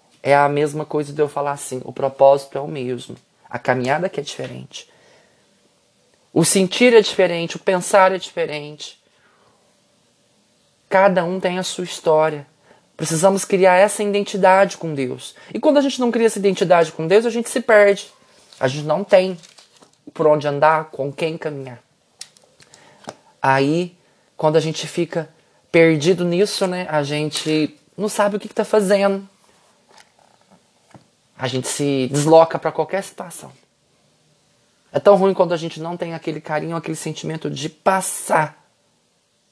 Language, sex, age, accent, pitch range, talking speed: Portuguese, male, 20-39, Brazilian, 150-200 Hz, 150 wpm